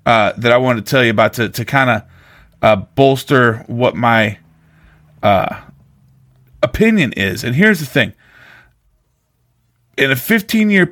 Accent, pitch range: American, 115-155 Hz